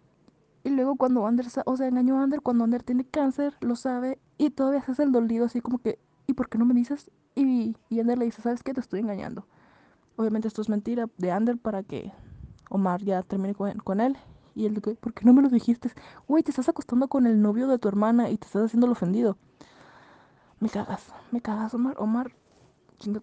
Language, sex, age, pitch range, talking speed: Spanish, female, 20-39, 205-250 Hz, 225 wpm